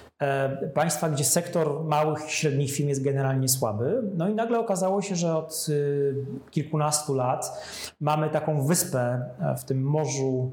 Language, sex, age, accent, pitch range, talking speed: Polish, male, 30-49, native, 135-170 Hz, 140 wpm